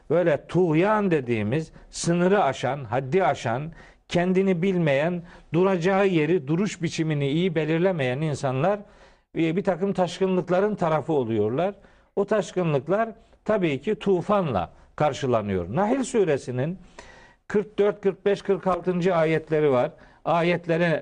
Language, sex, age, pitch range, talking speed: Turkish, male, 50-69, 150-195 Hz, 100 wpm